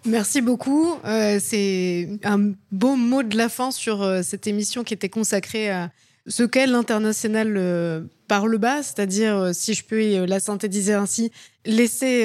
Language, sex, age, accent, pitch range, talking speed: French, female, 20-39, French, 200-235 Hz, 180 wpm